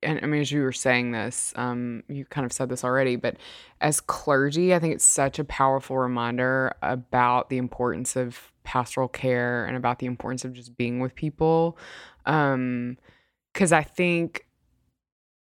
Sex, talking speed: female, 170 wpm